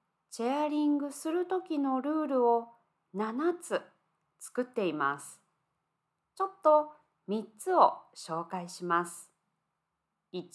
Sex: female